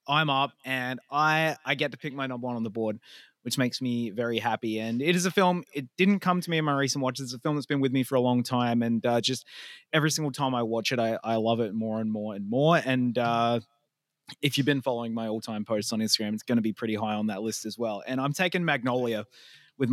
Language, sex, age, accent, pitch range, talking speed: English, male, 20-39, Australian, 120-150 Hz, 270 wpm